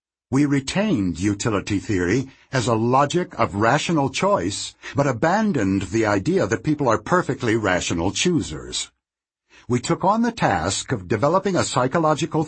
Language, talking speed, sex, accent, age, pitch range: English, 140 wpm, male, American, 60-79, 100-150 Hz